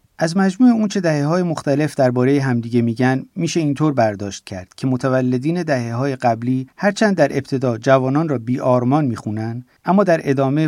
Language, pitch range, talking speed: Persian, 115-145 Hz, 155 wpm